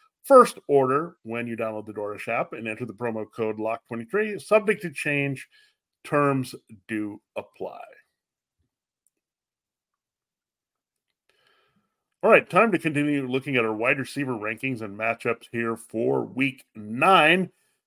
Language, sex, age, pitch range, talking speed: English, male, 40-59, 120-180 Hz, 125 wpm